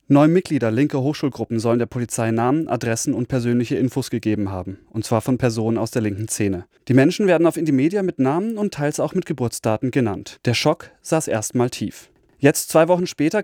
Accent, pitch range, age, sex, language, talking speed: German, 115-150 Hz, 30-49, male, German, 195 wpm